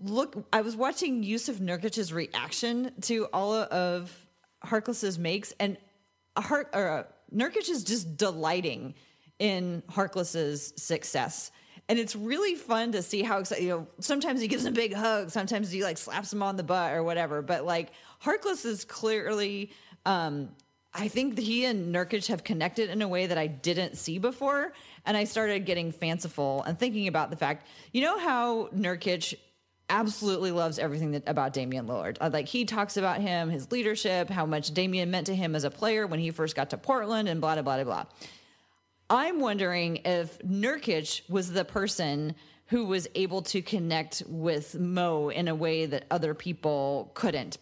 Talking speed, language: 180 wpm, English